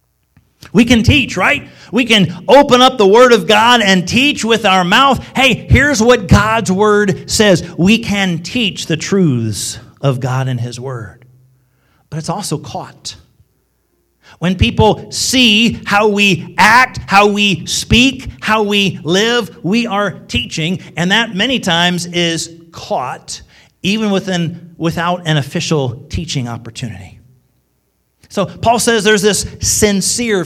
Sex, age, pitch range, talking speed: male, 40-59, 145-200 Hz, 140 wpm